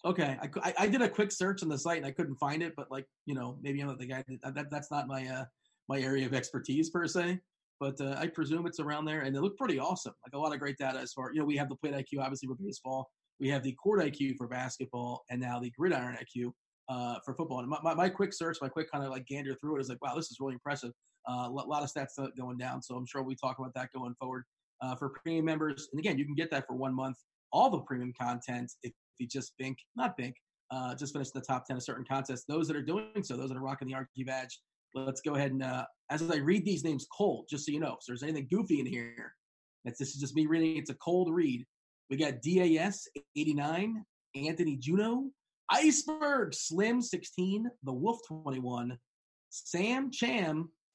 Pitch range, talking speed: 130-175 Hz, 245 wpm